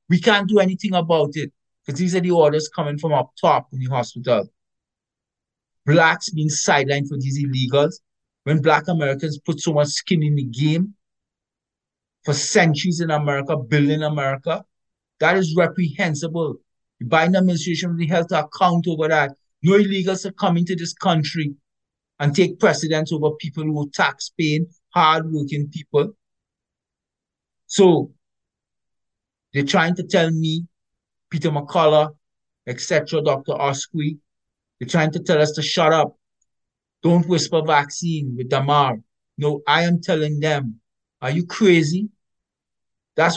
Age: 50-69